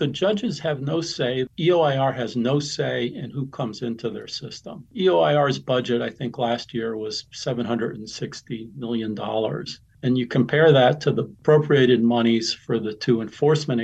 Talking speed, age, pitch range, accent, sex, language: 160 wpm, 50-69, 115-140 Hz, American, male, English